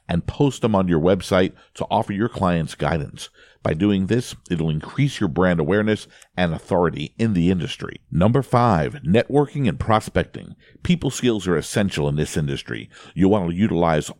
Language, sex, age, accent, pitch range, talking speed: English, male, 50-69, American, 85-110 Hz, 165 wpm